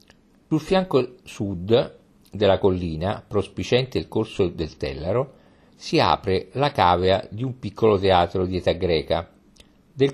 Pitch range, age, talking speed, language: 95-125 Hz, 50-69, 130 wpm, Italian